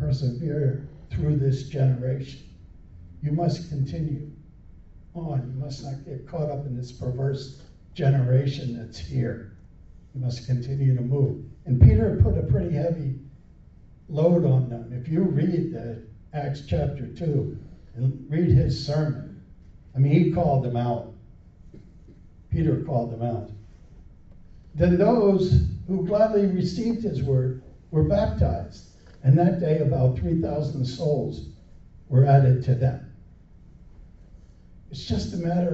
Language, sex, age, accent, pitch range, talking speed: English, male, 60-79, American, 100-160 Hz, 130 wpm